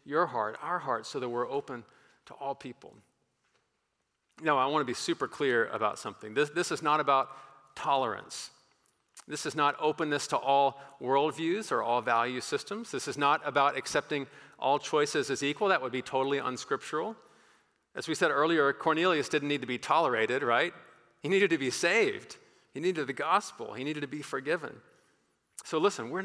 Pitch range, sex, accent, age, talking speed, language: 130-160 Hz, male, American, 40-59, 180 wpm, English